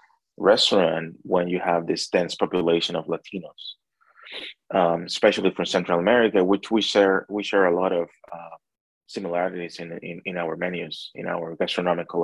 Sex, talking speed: male, 155 wpm